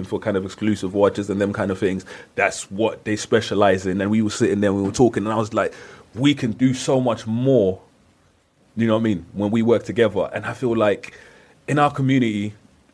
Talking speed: 225 wpm